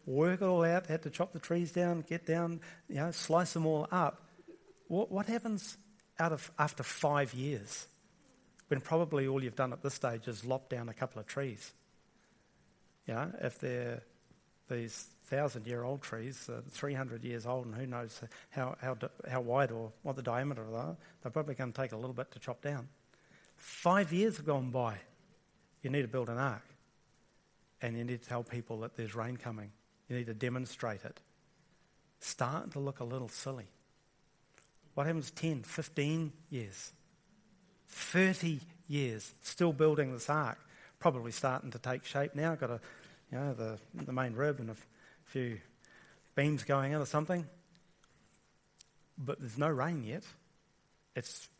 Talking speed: 170 wpm